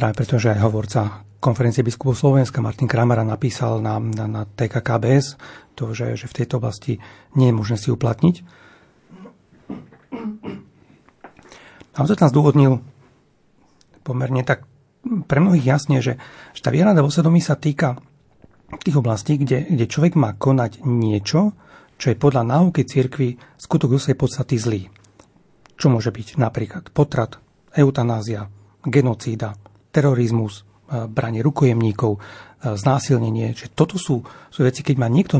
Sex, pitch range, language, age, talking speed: male, 115-145 Hz, Slovak, 40-59, 125 wpm